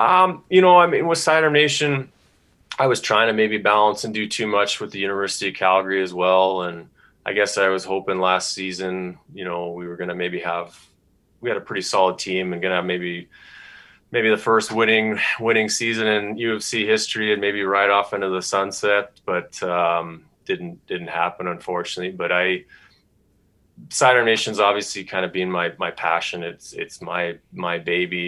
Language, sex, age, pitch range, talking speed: English, male, 20-39, 90-105 Hz, 190 wpm